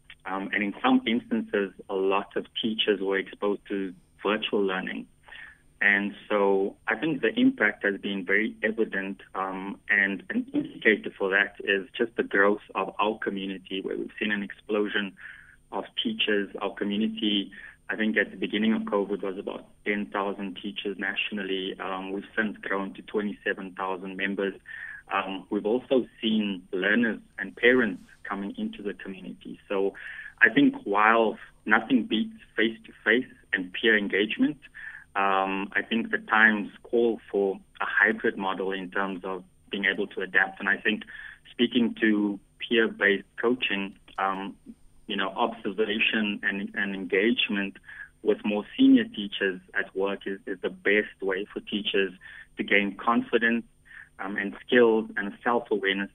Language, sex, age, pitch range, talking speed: English, male, 20-39, 95-110 Hz, 145 wpm